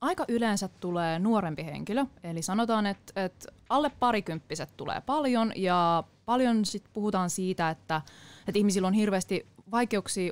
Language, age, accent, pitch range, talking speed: Finnish, 20-39, native, 170-220 Hz, 140 wpm